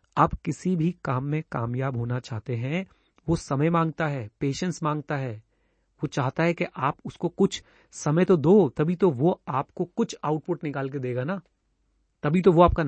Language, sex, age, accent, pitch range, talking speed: Hindi, male, 30-49, native, 130-175 Hz, 185 wpm